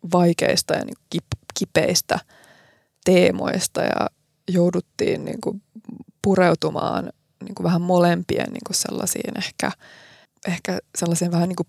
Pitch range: 170-210 Hz